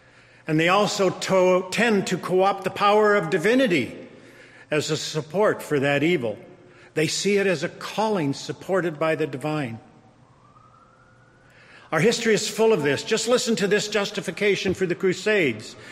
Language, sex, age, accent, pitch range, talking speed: English, male, 50-69, American, 130-195 Hz, 150 wpm